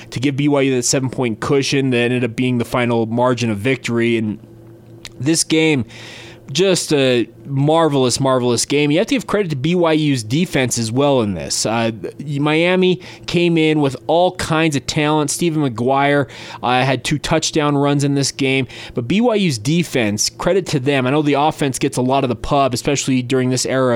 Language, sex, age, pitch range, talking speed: English, male, 20-39, 120-150 Hz, 185 wpm